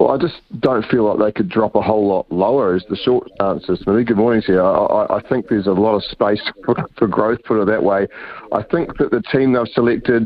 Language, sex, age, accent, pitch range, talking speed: English, male, 30-49, Australian, 95-110 Hz, 265 wpm